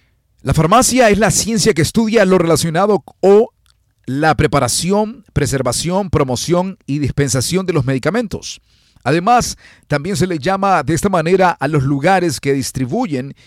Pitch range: 120-190 Hz